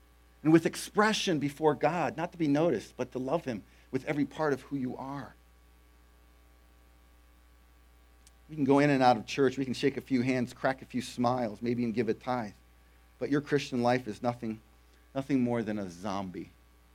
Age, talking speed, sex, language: 50-69, 190 wpm, male, English